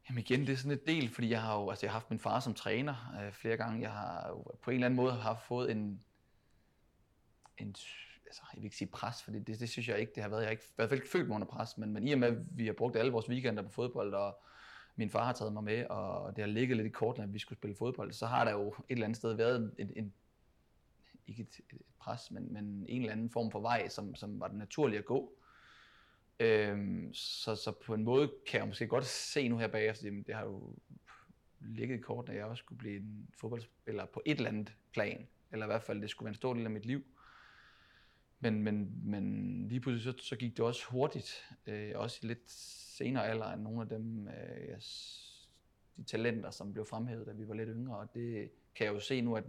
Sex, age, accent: male, 30-49, native